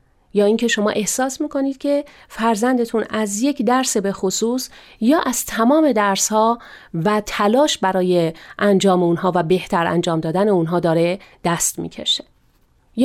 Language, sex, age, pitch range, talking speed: Persian, female, 40-59, 195-245 Hz, 140 wpm